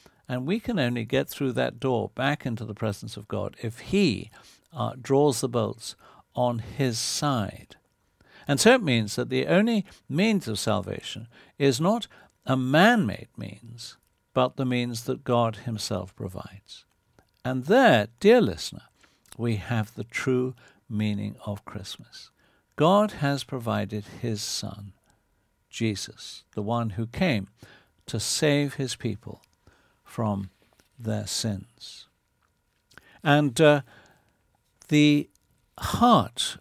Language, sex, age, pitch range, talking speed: English, male, 60-79, 105-135 Hz, 125 wpm